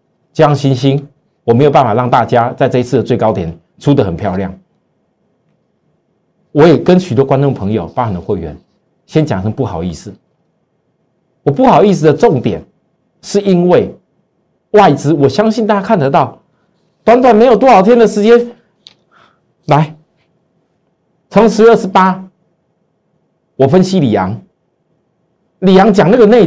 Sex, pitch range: male, 140-210 Hz